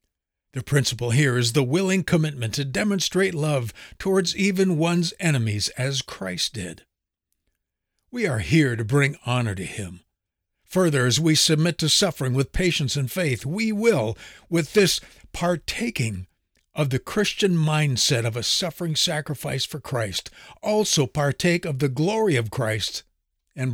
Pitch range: 120-170 Hz